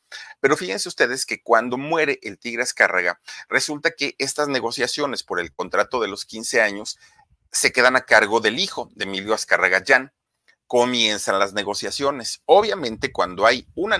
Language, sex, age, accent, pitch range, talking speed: Spanish, male, 40-59, Mexican, 105-150 Hz, 155 wpm